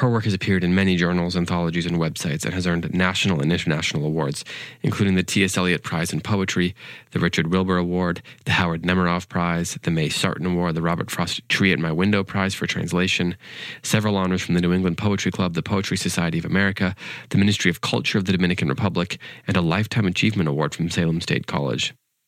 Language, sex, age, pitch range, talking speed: English, male, 30-49, 85-100 Hz, 205 wpm